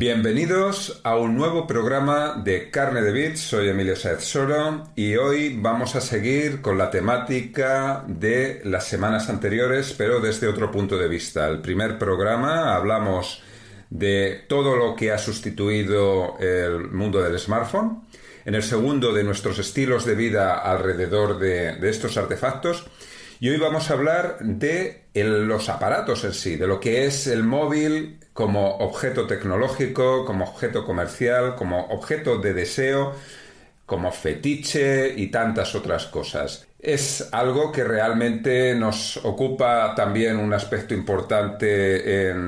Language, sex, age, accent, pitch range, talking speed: Spanish, male, 40-59, Spanish, 100-135 Hz, 145 wpm